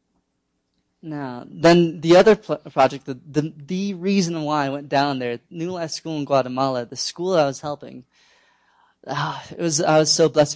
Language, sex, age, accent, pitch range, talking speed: English, male, 20-39, American, 130-160 Hz, 170 wpm